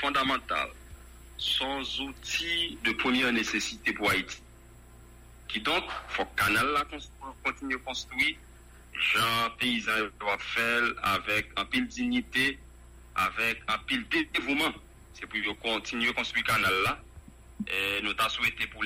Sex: male